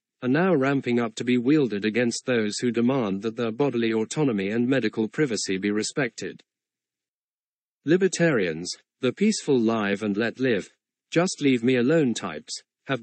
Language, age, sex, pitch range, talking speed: English, 40-59, male, 110-140 Hz, 120 wpm